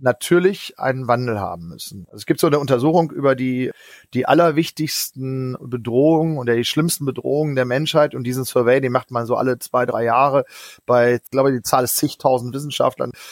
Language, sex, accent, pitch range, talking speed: German, male, German, 125-155 Hz, 180 wpm